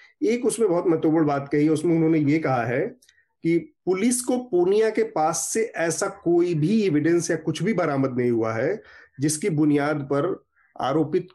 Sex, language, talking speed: male, Hindi, 180 wpm